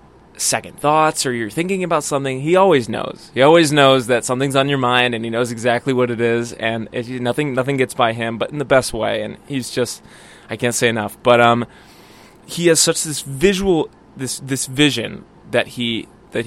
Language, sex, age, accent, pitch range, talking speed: English, male, 20-39, American, 115-135 Hz, 205 wpm